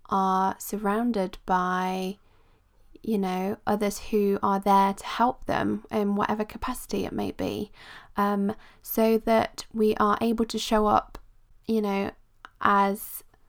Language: English